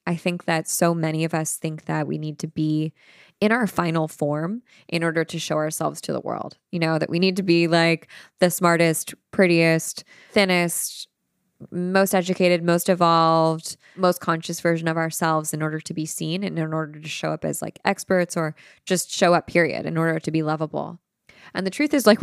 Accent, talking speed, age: American, 200 wpm, 20-39